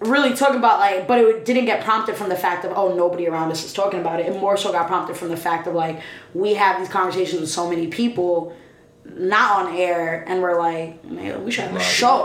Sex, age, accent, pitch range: female, 20-39, American, 170-200 Hz